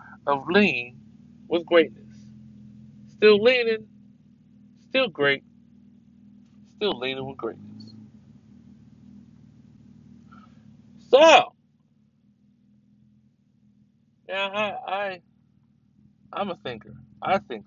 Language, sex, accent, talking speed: English, male, American, 70 wpm